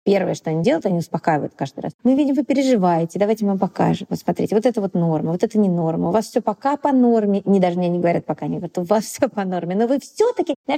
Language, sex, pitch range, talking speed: Russian, female, 175-230 Hz, 275 wpm